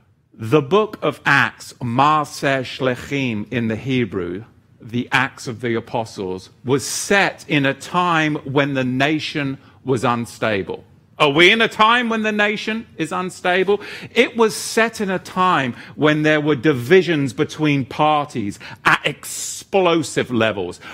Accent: British